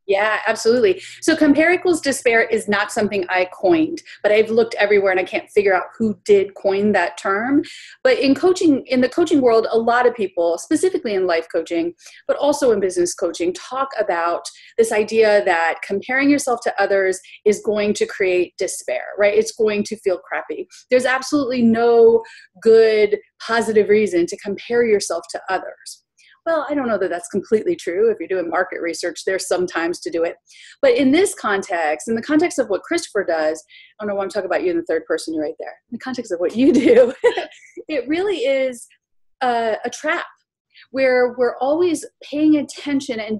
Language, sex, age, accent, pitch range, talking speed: English, female, 30-49, American, 200-305 Hz, 195 wpm